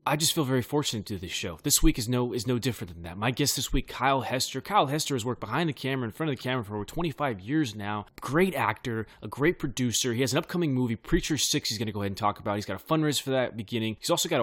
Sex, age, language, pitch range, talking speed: male, 20-39, English, 105-135 Hz, 295 wpm